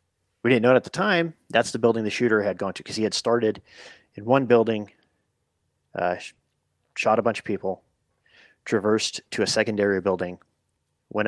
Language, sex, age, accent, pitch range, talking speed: English, male, 30-49, American, 95-115 Hz, 175 wpm